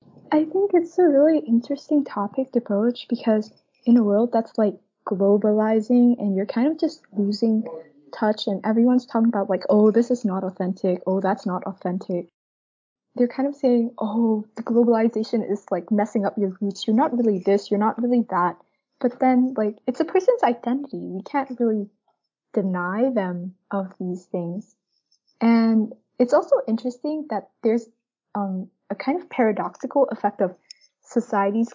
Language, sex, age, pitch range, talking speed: English, female, 20-39, 195-245 Hz, 165 wpm